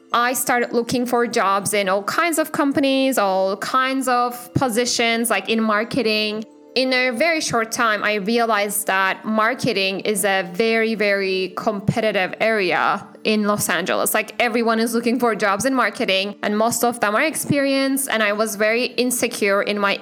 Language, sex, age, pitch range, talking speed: English, female, 10-29, 200-245 Hz, 170 wpm